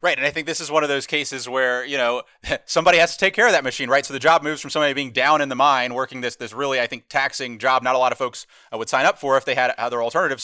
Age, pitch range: 30-49, 125-140 Hz